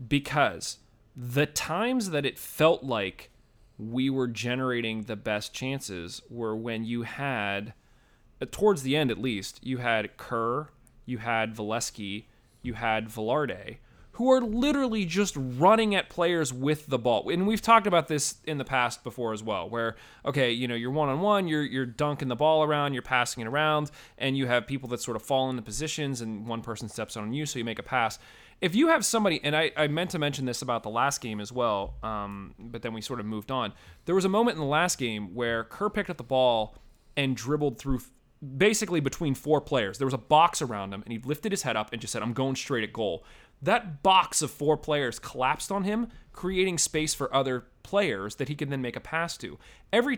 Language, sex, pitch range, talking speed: English, male, 115-155 Hz, 215 wpm